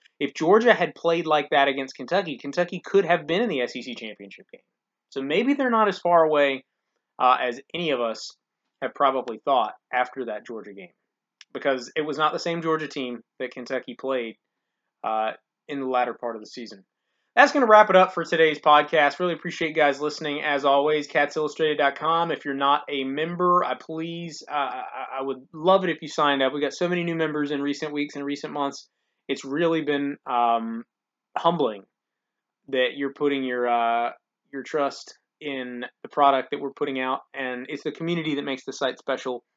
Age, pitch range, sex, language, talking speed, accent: 20-39, 130-160 Hz, male, English, 195 wpm, American